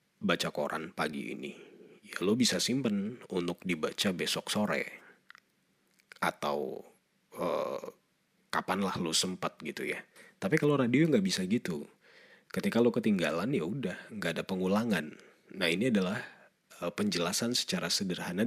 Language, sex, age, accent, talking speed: Indonesian, male, 40-59, native, 125 wpm